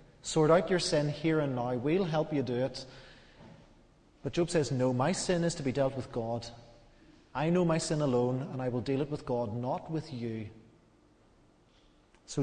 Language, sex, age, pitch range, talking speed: English, male, 30-49, 120-150 Hz, 195 wpm